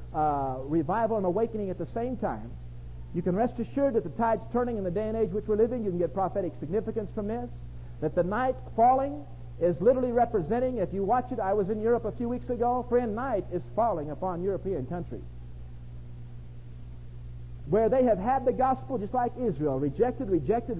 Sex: male